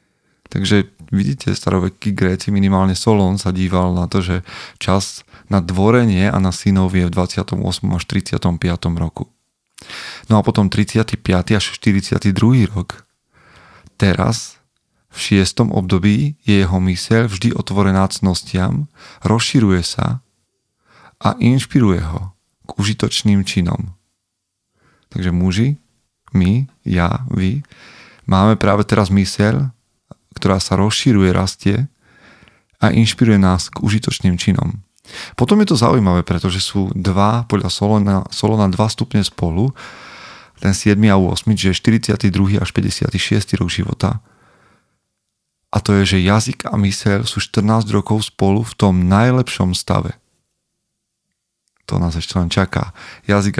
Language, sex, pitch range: Slovak, male, 95-110 Hz